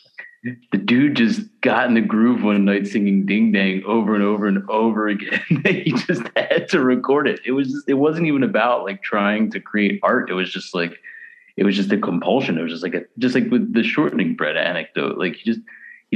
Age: 30-49